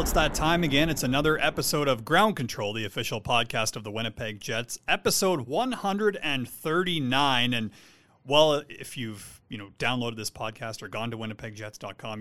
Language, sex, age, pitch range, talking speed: English, male, 30-49, 110-135 Hz, 155 wpm